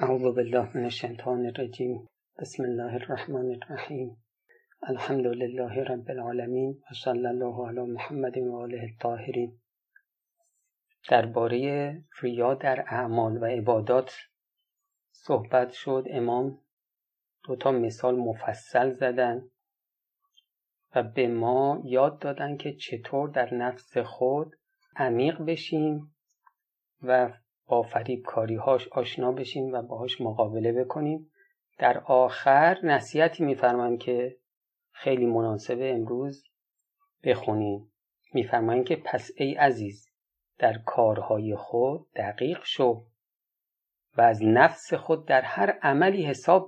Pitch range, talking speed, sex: 120-140 Hz, 105 wpm, male